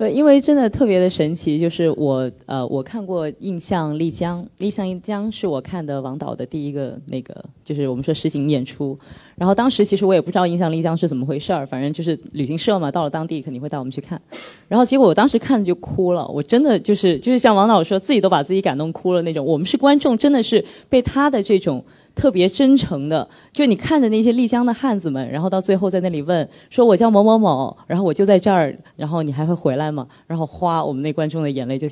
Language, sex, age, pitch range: Chinese, female, 20-39, 150-225 Hz